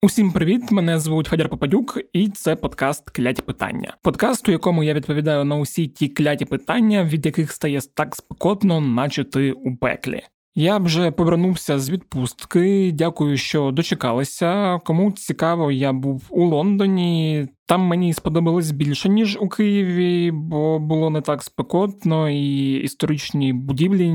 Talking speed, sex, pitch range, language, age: 145 wpm, male, 140-175 Hz, Ukrainian, 20-39